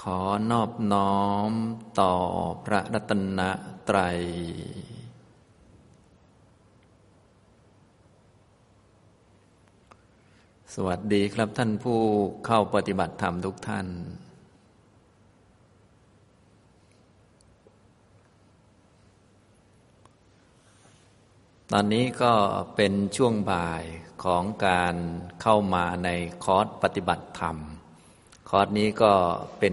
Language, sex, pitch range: Thai, male, 90-105 Hz